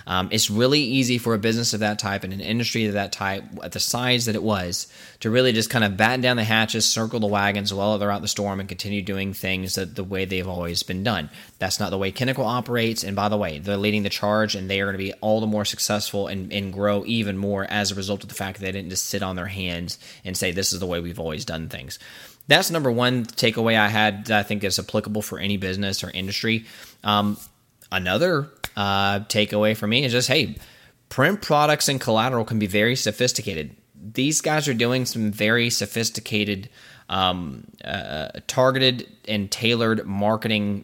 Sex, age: male, 20-39